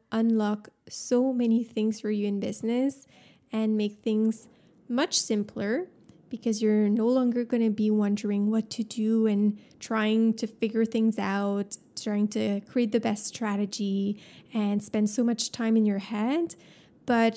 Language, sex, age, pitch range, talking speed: English, female, 20-39, 210-235 Hz, 155 wpm